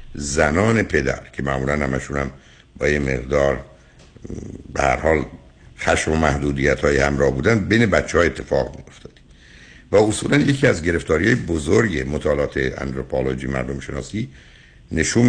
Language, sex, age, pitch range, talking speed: Persian, male, 60-79, 65-90 Hz, 125 wpm